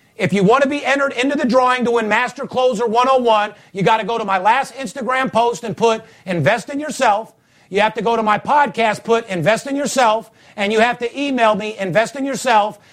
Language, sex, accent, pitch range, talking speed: English, male, American, 195-235 Hz, 225 wpm